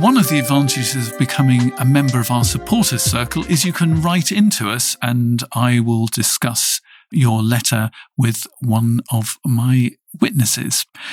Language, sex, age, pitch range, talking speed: English, male, 50-69, 115-150 Hz, 155 wpm